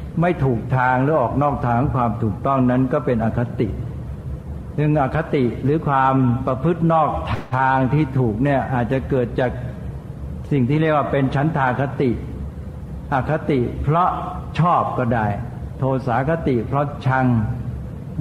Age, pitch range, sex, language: 60-79, 120-145 Hz, male, Thai